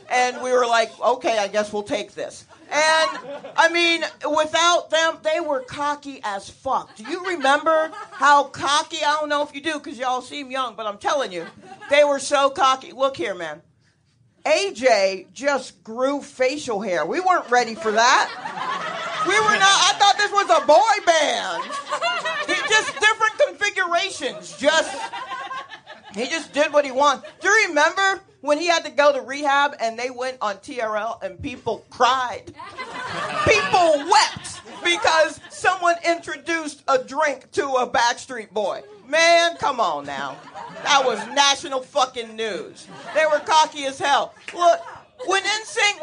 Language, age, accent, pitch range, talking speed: English, 40-59, American, 255-330 Hz, 160 wpm